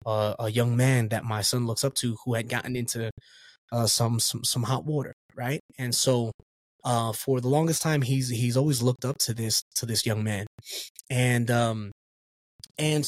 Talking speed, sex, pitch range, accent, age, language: 195 wpm, male, 115-140 Hz, American, 20-39, English